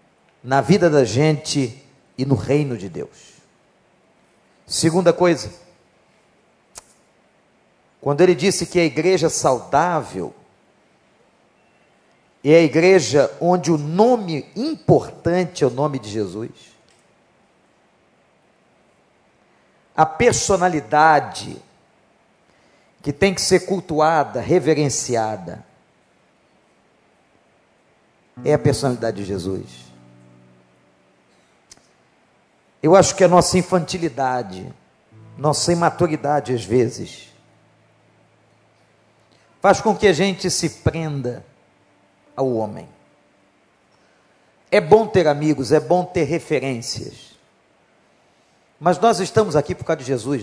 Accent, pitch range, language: Brazilian, 115-180 Hz, Portuguese